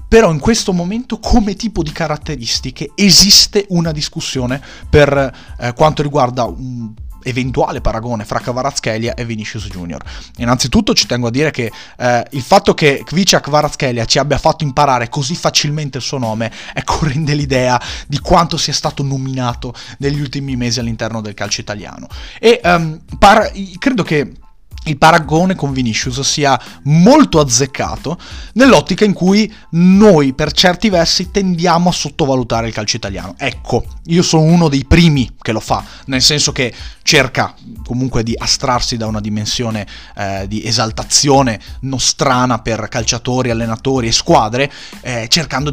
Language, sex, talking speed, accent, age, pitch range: Italian, male, 150 wpm, native, 30-49, 115-160 Hz